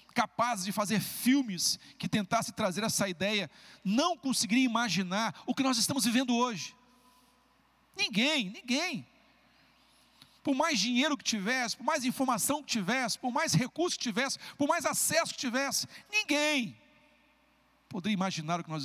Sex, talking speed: male, 145 wpm